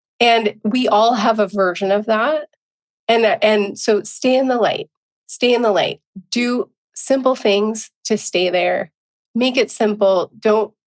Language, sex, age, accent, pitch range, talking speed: English, female, 30-49, American, 200-250 Hz, 160 wpm